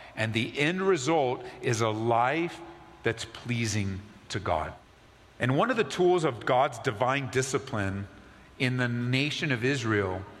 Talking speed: 145 wpm